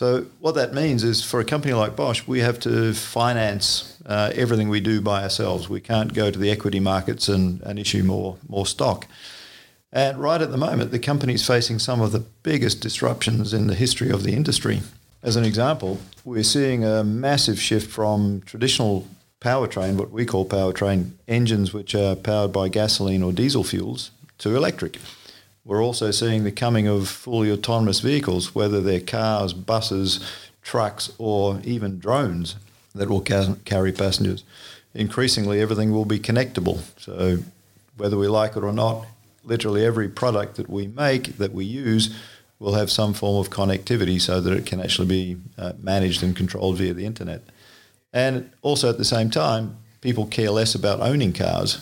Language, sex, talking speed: English, male, 175 wpm